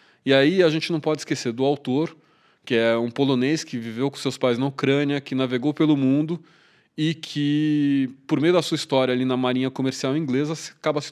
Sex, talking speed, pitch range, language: male, 205 wpm, 130-155 Hz, Portuguese